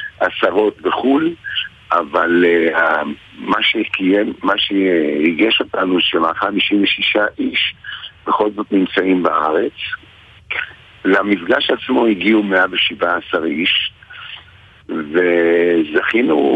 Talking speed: 75 wpm